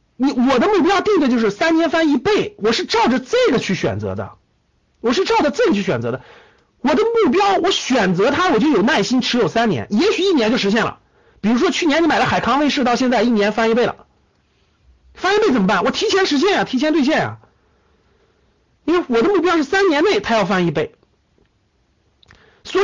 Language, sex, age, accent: Chinese, male, 50-69, native